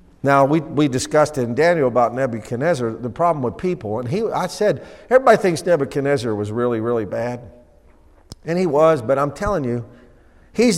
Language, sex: English, male